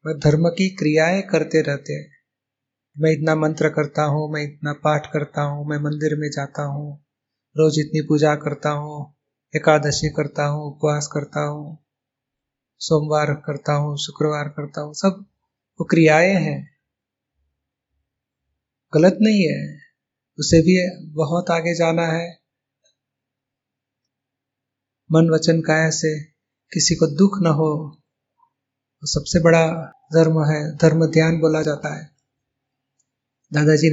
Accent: native